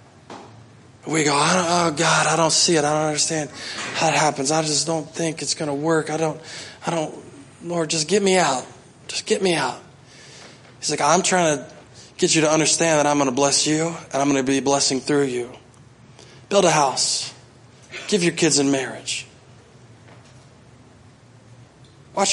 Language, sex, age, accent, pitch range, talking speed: English, male, 20-39, American, 130-160 Hz, 185 wpm